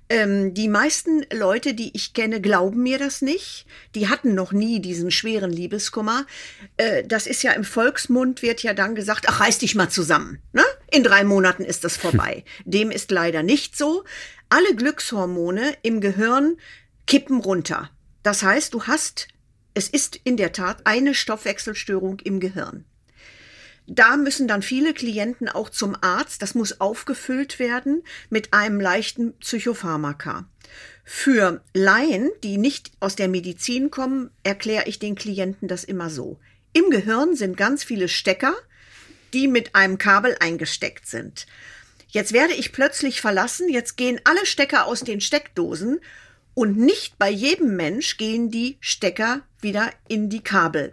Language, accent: German, German